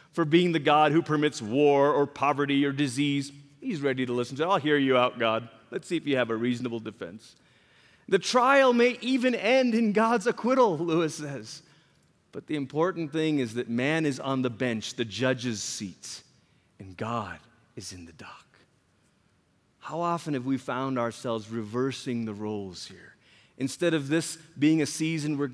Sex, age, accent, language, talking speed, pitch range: male, 30-49, American, English, 180 wpm, 125-170 Hz